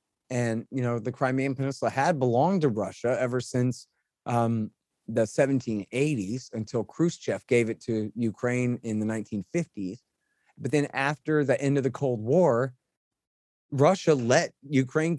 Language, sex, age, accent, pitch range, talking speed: English, male, 30-49, American, 105-135 Hz, 140 wpm